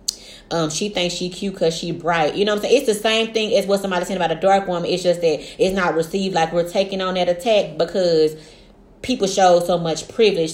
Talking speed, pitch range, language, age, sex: 245 wpm, 165-200 Hz, English, 30-49, female